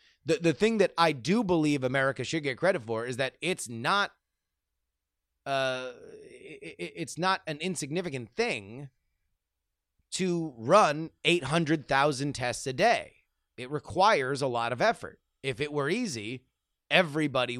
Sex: male